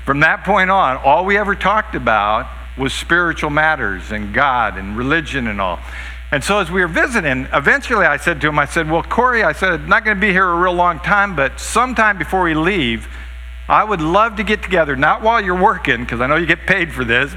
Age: 50-69